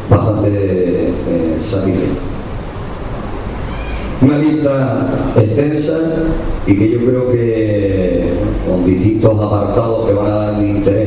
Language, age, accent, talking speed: Spanish, 40-59, Spanish, 110 wpm